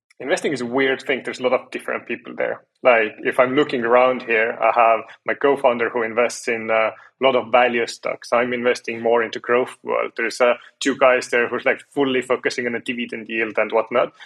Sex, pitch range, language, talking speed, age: male, 115-130 Hz, English, 220 wpm, 20-39